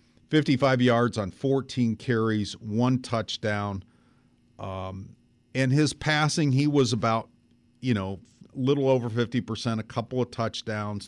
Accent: American